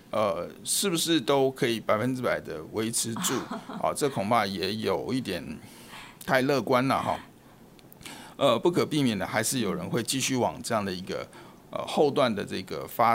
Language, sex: Chinese, male